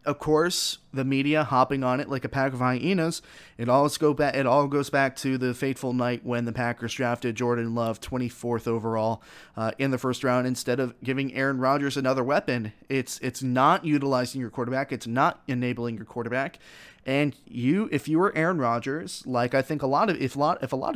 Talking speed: 200 wpm